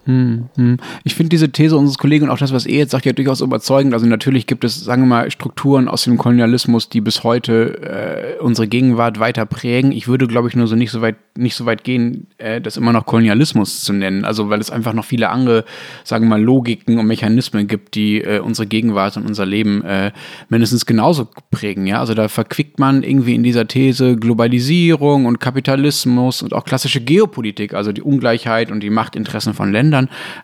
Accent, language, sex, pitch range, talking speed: German, German, male, 110-135 Hz, 205 wpm